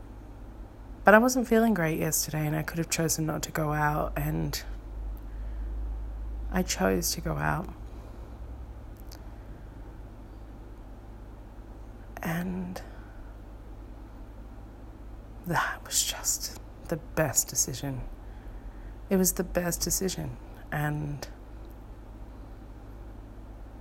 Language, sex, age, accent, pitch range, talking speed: English, female, 30-49, Australian, 105-165 Hz, 85 wpm